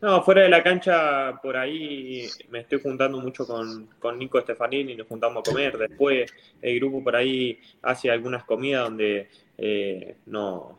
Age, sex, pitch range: 20-39, male, 110-135 Hz